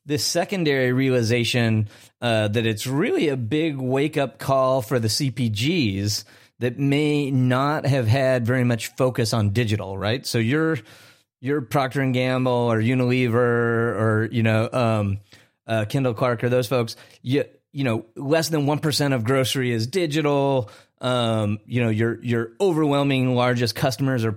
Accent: American